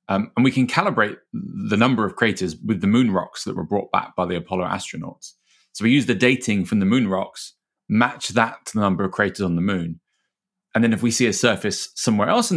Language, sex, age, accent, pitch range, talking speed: English, male, 30-49, British, 90-130 Hz, 240 wpm